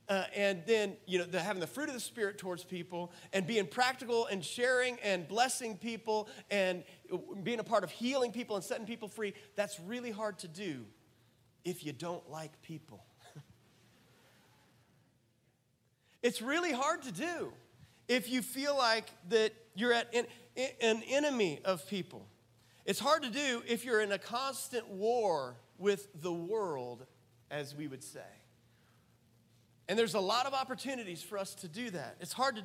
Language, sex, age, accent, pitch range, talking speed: English, male, 40-59, American, 170-230 Hz, 160 wpm